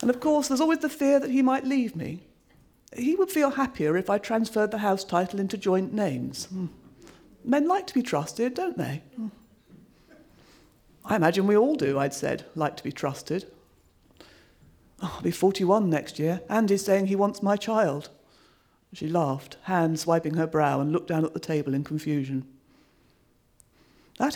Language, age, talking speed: English, 40-59, 175 wpm